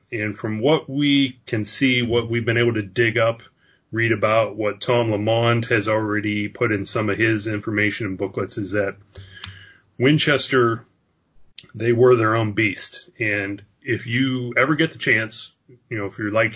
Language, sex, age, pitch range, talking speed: English, male, 30-49, 100-120 Hz, 175 wpm